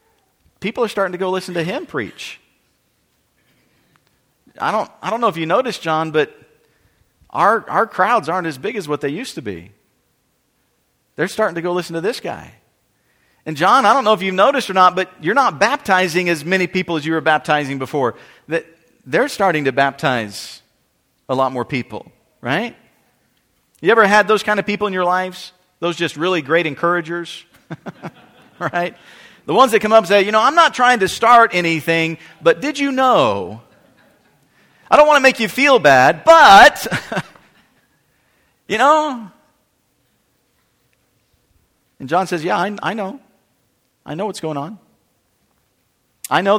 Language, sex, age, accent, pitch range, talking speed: English, male, 50-69, American, 160-210 Hz, 165 wpm